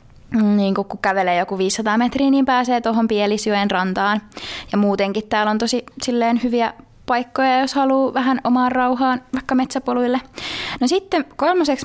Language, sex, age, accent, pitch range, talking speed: Finnish, female, 20-39, native, 205-265 Hz, 150 wpm